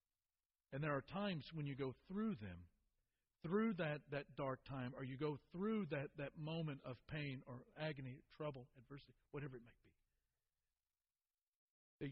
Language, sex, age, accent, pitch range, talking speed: English, male, 50-69, American, 110-165 Hz, 160 wpm